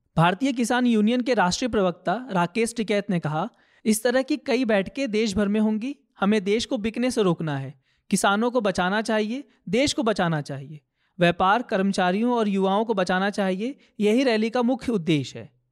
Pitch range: 185-235 Hz